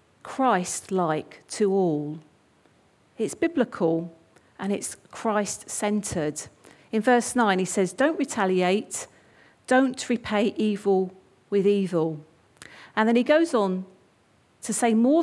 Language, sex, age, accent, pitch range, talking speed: English, female, 40-59, British, 175-235 Hz, 110 wpm